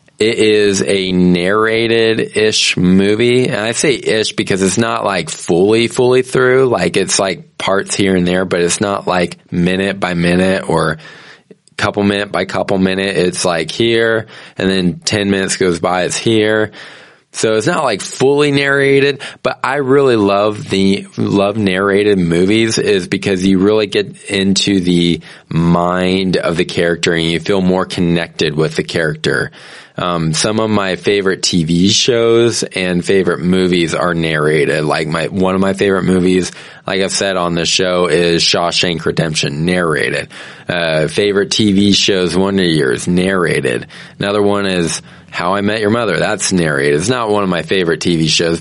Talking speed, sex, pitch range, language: 165 wpm, male, 90-110 Hz, English